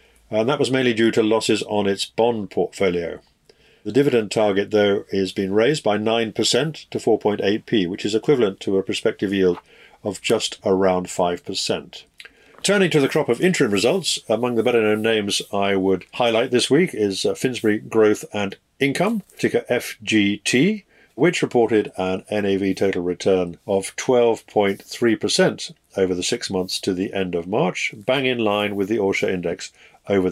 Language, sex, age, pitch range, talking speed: English, male, 50-69, 100-125 Hz, 160 wpm